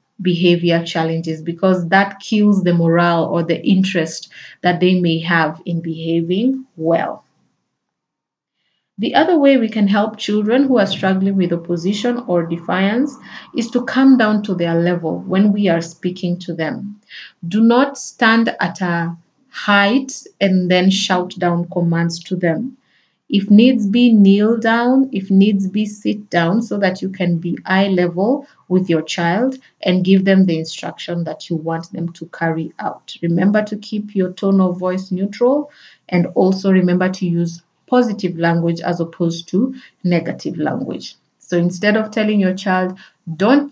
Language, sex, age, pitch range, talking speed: English, female, 30-49, 170-210 Hz, 160 wpm